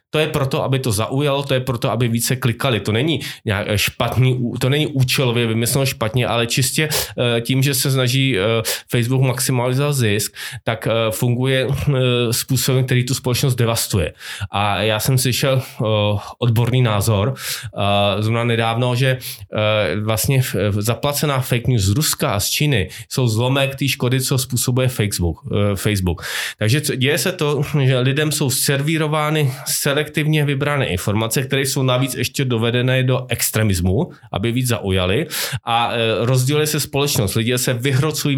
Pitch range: 110-135 Hz